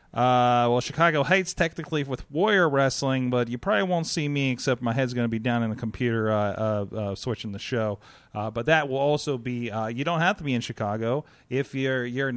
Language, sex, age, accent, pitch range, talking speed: English, male, 30-49, American, 115-160 Hz, 230 wpm